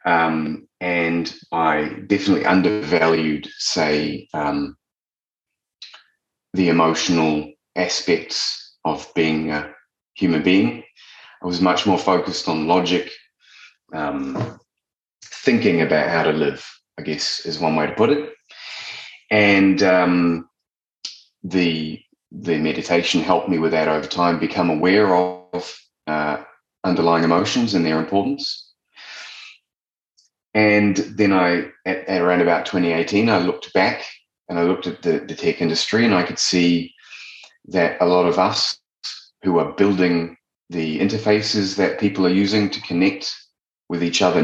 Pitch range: 80-95 Hz